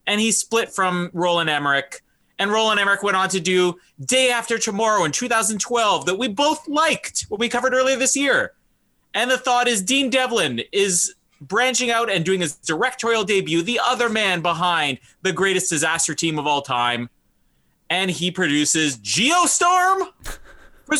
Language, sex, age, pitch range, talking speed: English, male, 30-49, 175-265 Hz, 165 wpm